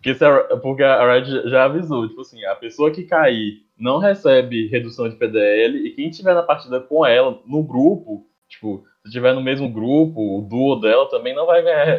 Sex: male